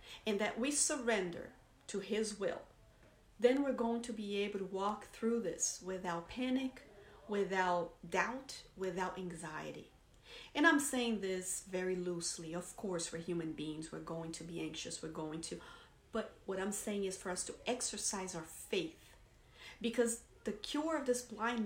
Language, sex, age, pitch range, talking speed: English, female, 40-59, 185-245 Hz, 165 wpm